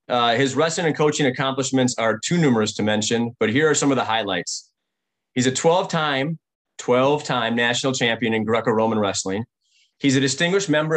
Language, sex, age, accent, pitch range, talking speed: English, male, 30-49, American, 125-150 Hz, 185 wpm